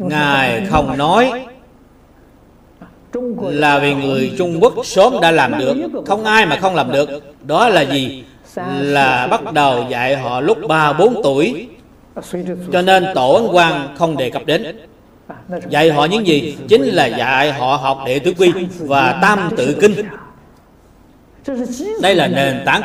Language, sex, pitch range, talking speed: Vietnamese, male, 140-200 Hz, 150 wpm